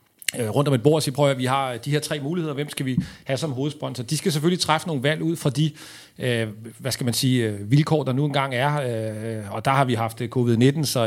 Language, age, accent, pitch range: Danish, 40-59, native, 125-150 Hz